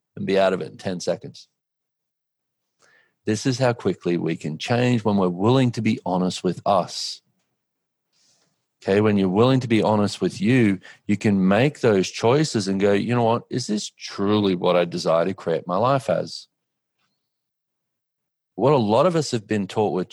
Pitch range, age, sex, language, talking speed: 90-115 Hz, 40-59, male, English, 185 wpm